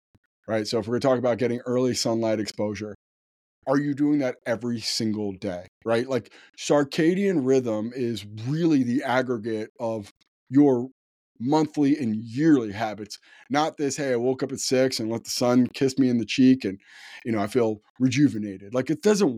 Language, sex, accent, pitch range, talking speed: English, male, American, 110-140 Hz, 180 wpm